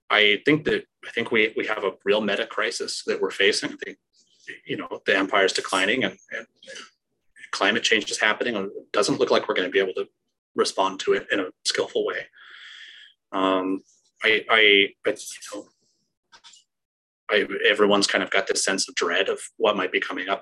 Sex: male